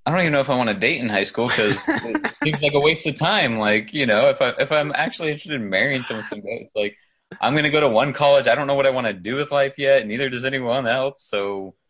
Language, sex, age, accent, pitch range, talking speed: English, male, 20-39, American, 90-120 Hz, 280 wpm